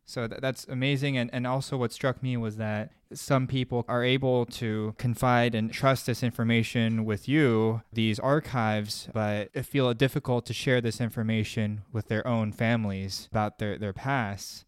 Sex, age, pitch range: male, 20-39, 110-135 Hz